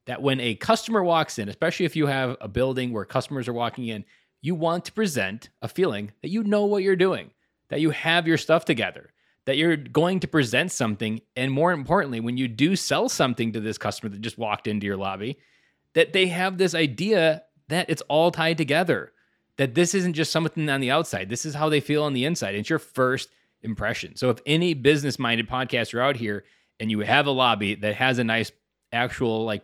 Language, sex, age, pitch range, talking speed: English, male, 20-39, 110-160 Hz, 215 wpm